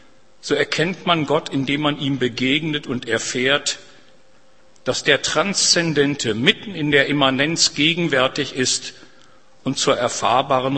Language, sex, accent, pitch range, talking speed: German, male, German, 130-170 Hz, 120 wpm